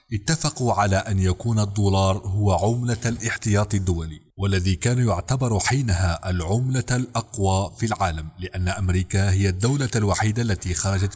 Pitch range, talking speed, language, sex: 95-120 Hz, 130 wpm, Arabic, male